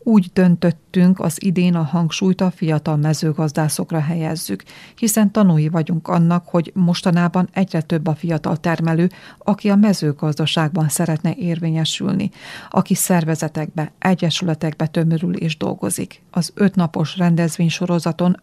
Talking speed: 115 wpm